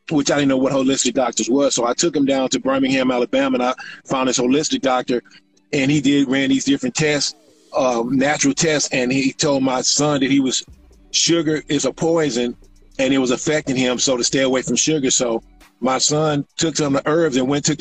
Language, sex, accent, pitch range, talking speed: English, male, American, 130-155 Hz, 225 wpm